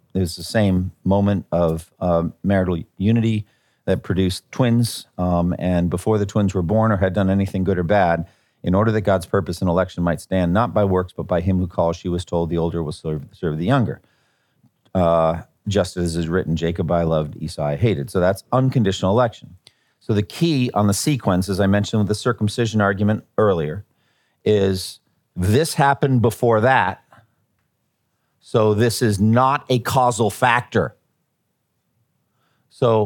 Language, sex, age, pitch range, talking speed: English, male, 40-59, 95-140 Hz, 170 wpm